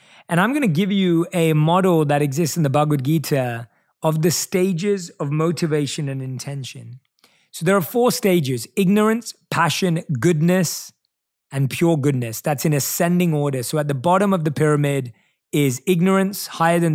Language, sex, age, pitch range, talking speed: English, male, 20-39, 145-190 Hz, 165 wpm